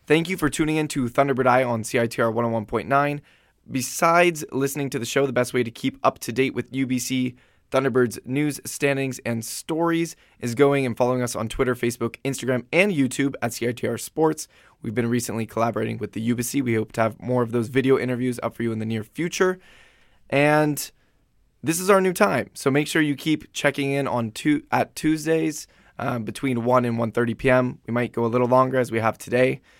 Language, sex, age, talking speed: English, male, 20-39, 205 wpm